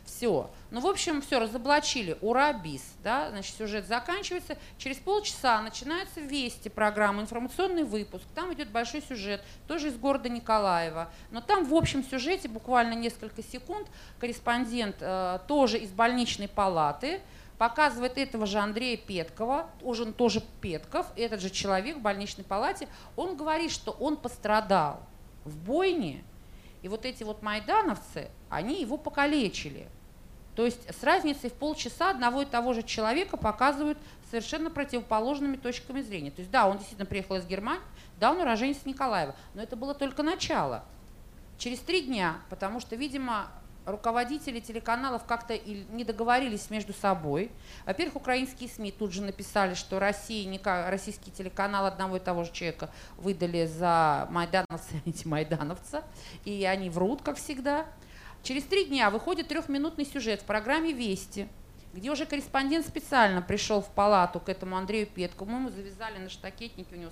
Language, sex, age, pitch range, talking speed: Russian, female, 40-59, 195-280 Hz, 150 wpm